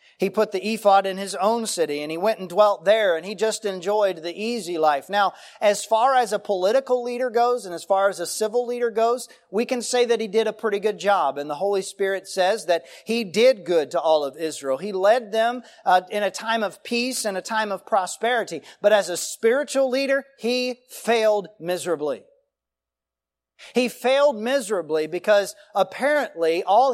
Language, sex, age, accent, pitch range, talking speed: English, male, 40-59, American, 180-235 Hz, 195 wpm